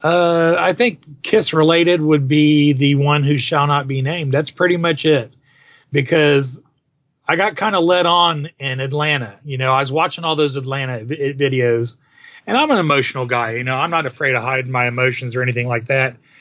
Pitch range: 125-150 Hz